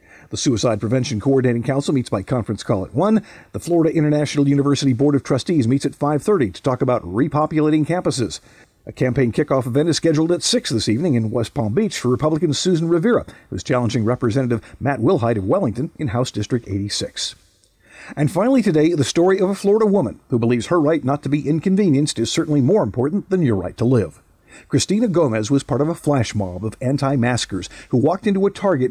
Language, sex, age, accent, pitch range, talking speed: English, male, 50-69, American, 115-155 Hz, 200 wpm